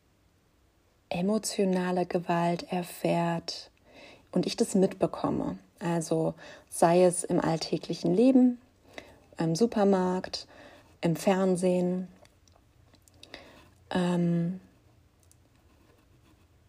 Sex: female